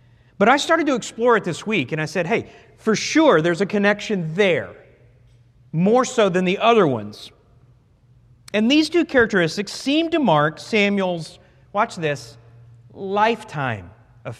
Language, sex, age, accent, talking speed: English, male, 40-59, American, 150 wpm